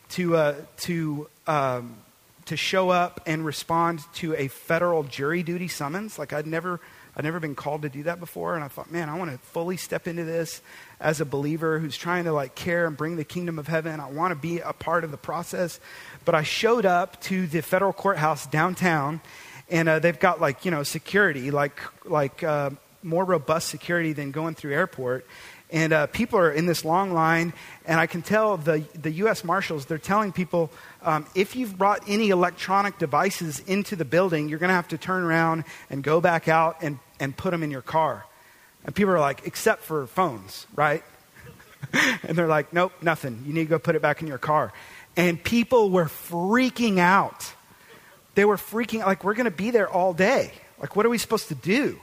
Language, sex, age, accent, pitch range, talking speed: English, male, 30-49, American, 155-185 Hz, 205 wpm